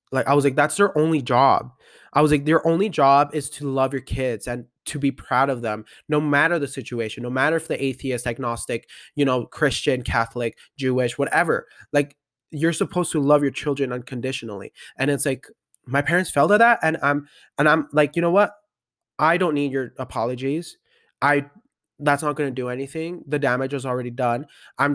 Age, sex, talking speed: 20-39, male, 195 wpm